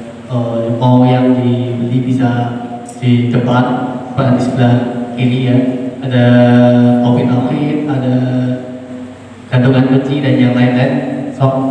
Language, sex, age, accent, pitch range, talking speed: Indonesian, male, 20-39, native, 120-130 Hz, 115 wpm